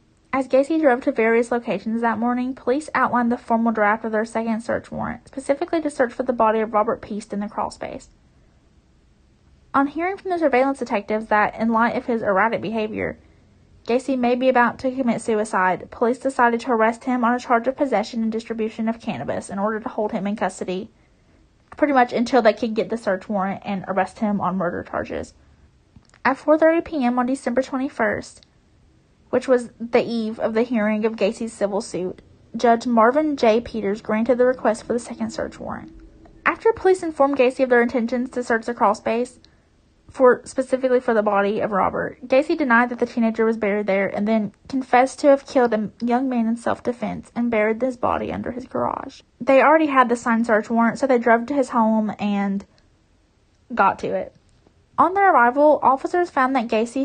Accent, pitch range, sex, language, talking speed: American, 220-260 Hz, female, English, 190 wpm